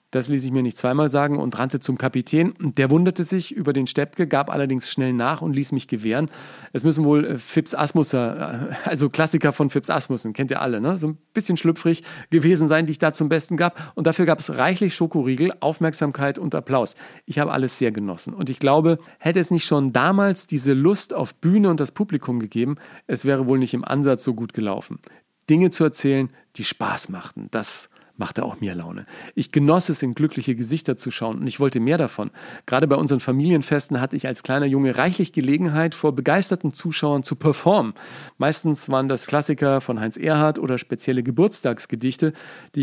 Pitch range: 130-160 Hz